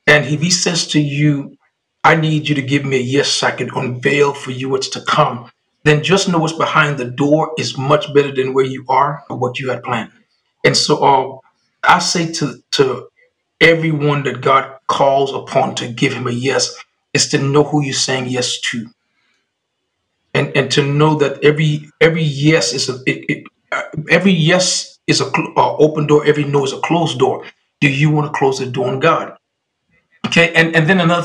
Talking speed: 205 wpm